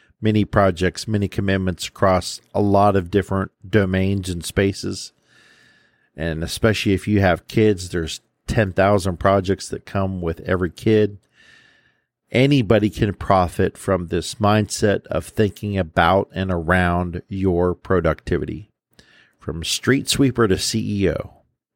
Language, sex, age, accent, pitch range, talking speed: English, male, 50-69, American, 95-110 Hz, 120 wpm